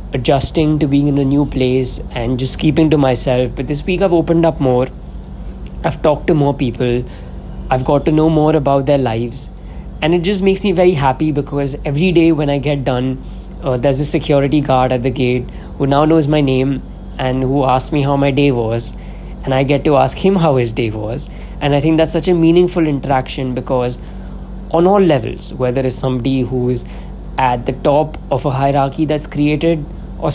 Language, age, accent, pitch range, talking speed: English, 20-39, Indian, 130-160 Hz, 200 wpm